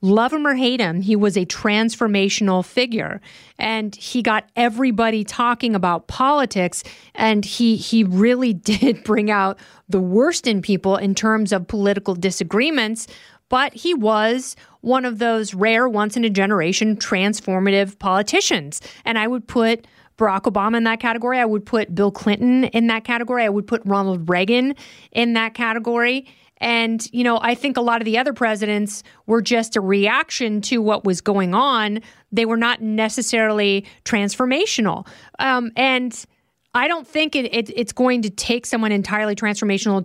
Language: English